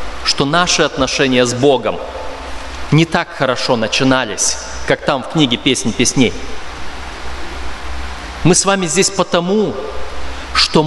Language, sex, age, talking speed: Russian, male, 30-49, 115 wpm